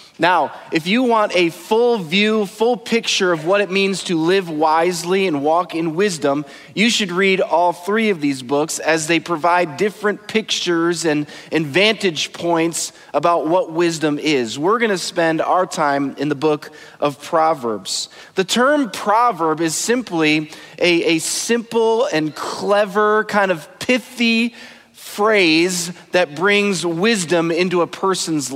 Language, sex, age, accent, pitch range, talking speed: English, male, 30-49, American, 160-205 Hz, 150 wpm